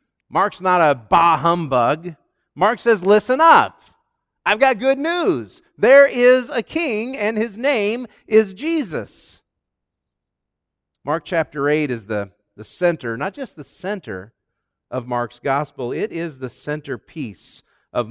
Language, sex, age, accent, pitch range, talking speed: English, male, 40-59, American, 125-170 Hz, 135 wpm